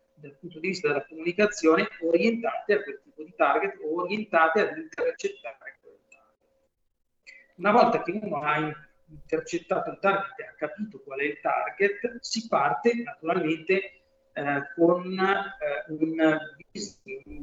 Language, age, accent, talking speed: Italian, 40-59, native, 140 wpm